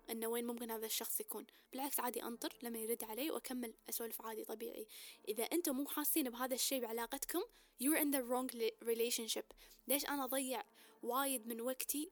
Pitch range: 235-310 Hz